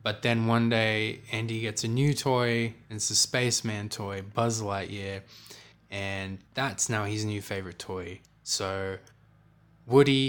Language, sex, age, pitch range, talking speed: English, male, 20-39, 105-130 Hz, 145 wpm